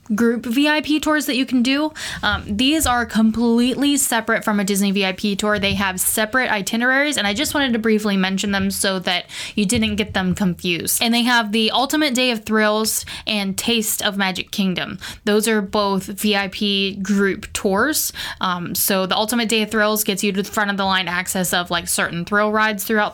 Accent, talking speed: American, 200 wpm